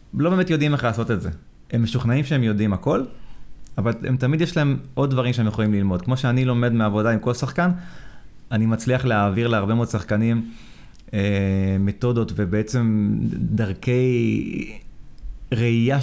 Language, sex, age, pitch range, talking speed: Hebrew, male, 30-49, 105-135 Hz, 150 wpm